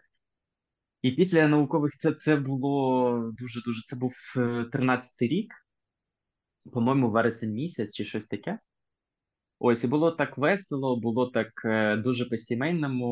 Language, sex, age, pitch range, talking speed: Ukrainian, male, 20-39, 110-135 Hz, 125 wpm